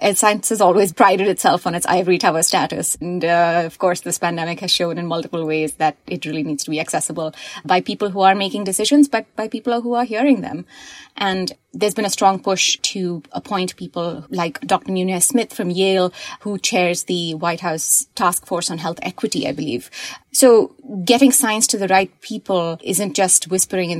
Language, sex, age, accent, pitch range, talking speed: English, female, 30-49, Indian, 170-210 Hz, 200 wpm